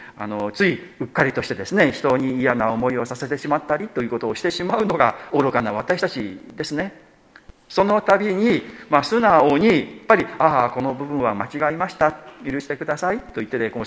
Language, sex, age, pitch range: Japanese, male, 50-69, 125-180 Hz